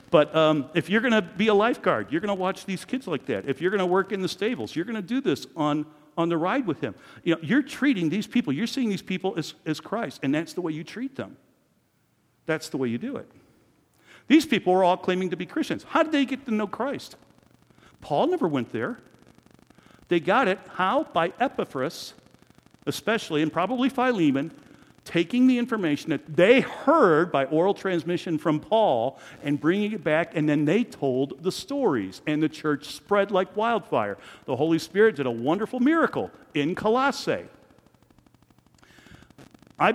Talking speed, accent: 190 wpm, American